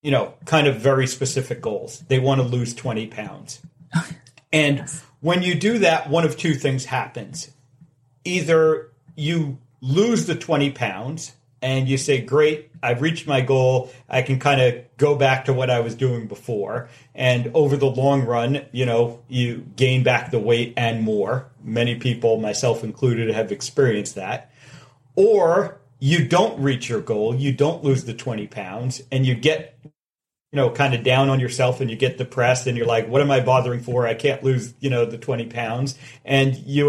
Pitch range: 125-150 Hz